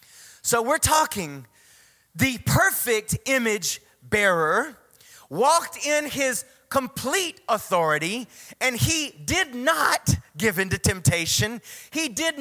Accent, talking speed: American, 105 wpm